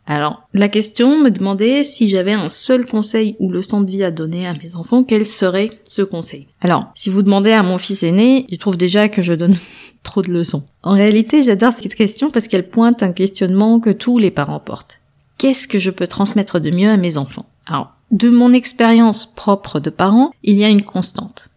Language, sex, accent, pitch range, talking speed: French, female, French, 180-220 Hz, 215 wpm